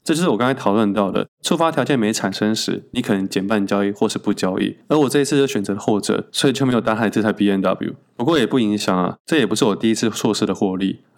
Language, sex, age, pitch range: Chinese, male, 20-39, 100-135 Hz